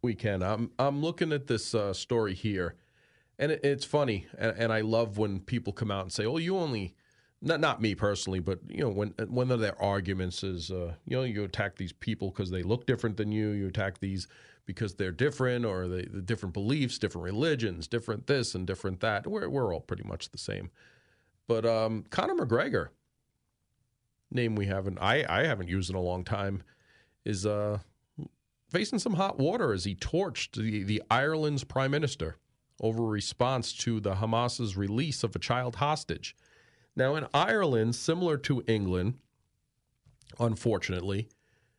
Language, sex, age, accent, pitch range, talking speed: English, male, 40-59, American, 105-130 Hz, 175 wpm